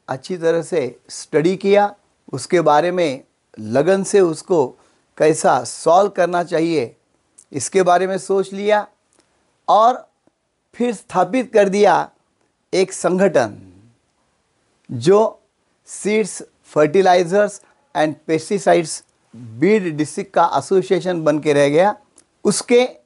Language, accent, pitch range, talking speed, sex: Marathi, native, 150-215 Hz, 105 wpm, male